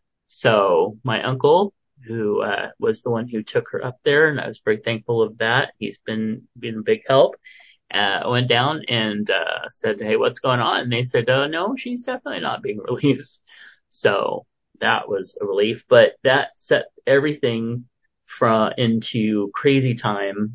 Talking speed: 175 wpm